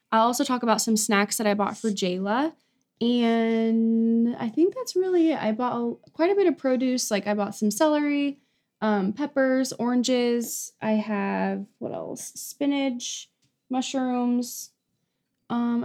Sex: female